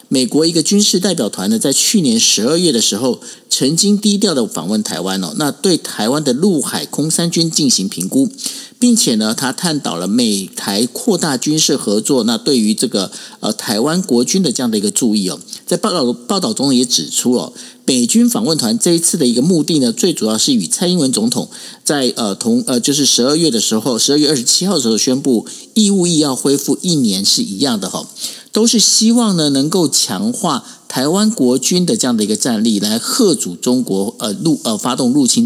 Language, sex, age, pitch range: Chinese, male, 50-69, 140-230 Hz